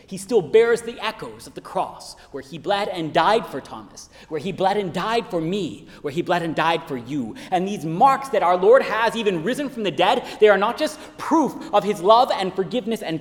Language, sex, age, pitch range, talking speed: English, male, 30-49, 155-255 Hz, 235 wpm